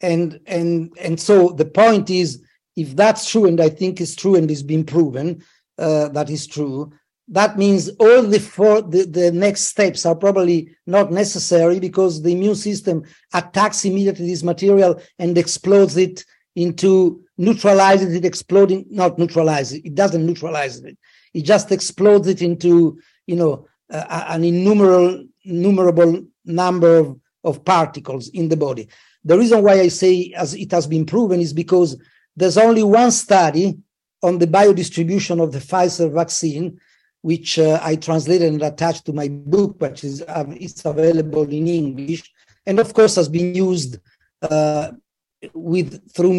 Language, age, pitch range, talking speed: English, 50-69, 155-190 Hz, 160 wpm